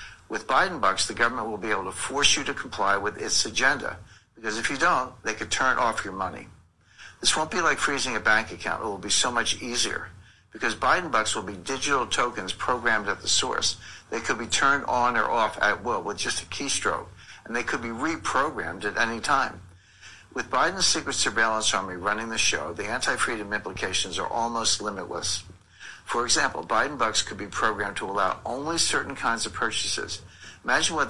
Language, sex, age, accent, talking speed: English, male, 60-79, American, 195 wpm